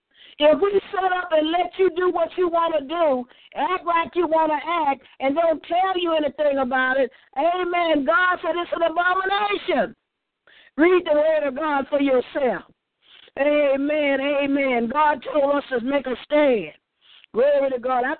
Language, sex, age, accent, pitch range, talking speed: English, female, 50-69, American, 280-350 Hz, 170 wpm